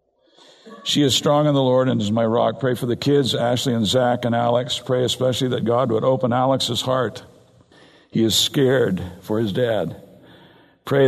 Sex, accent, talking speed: male, American, 185 wpm